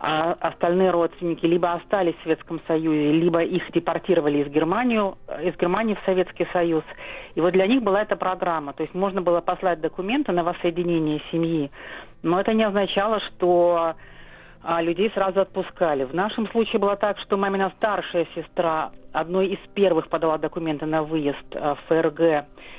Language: Russian